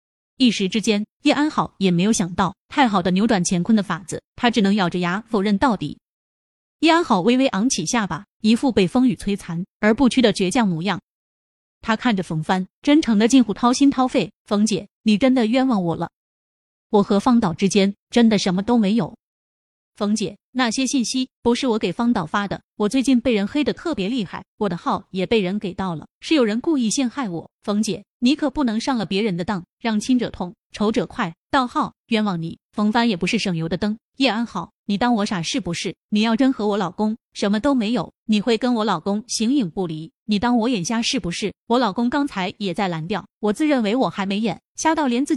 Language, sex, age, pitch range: Chinese, female, 20-39, 195-245 Hz